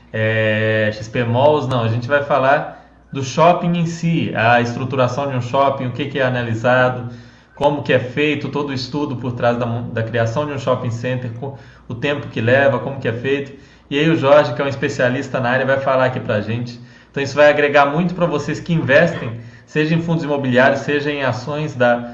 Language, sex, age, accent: Portuguese, male, 20-39, Brazilian